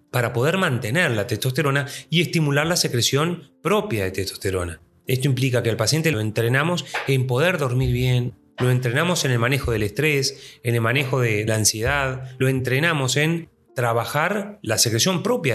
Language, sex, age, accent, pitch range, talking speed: Spanish, male, 30-49, Argentinian, 125-160 Hz, 165 wpm